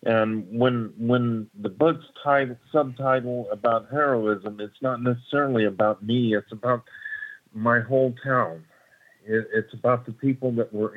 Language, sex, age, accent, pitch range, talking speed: English, male, 50-69, American, 105-120 Hz, 140 wpm